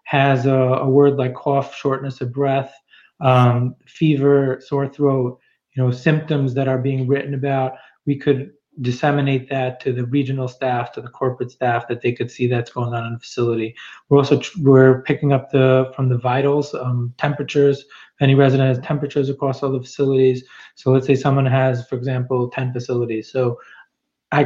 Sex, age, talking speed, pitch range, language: male, 20-39, 180 wpm, 125-140 Hz, English